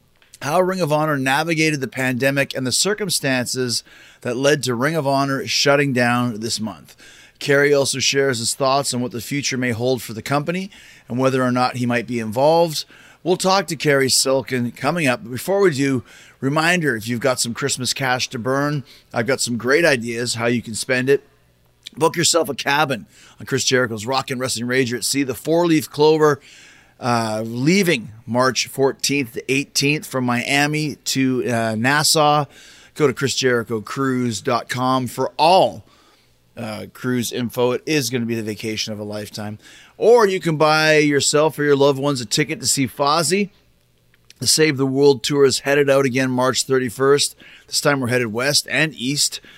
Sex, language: male, English